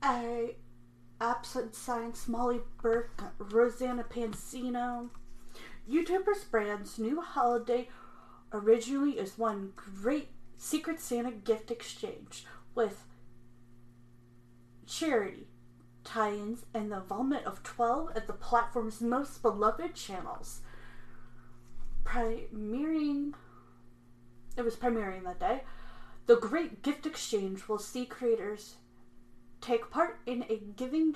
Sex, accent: female, American